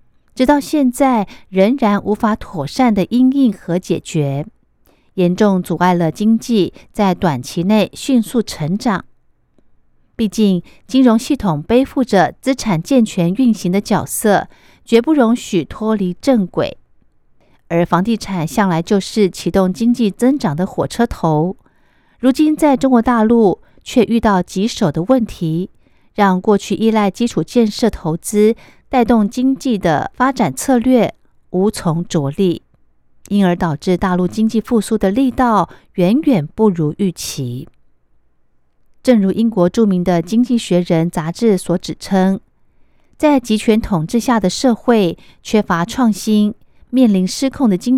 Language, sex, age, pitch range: Chinese, female, 50-69, 175-235 Hz